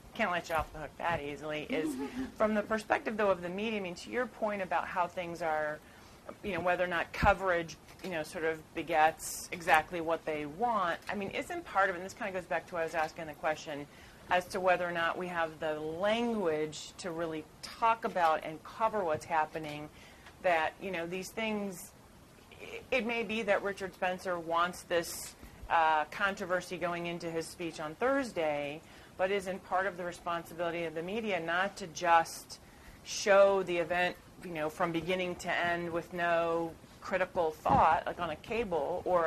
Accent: American